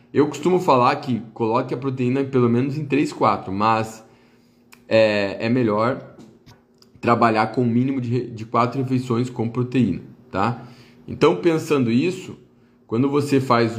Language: Portuguese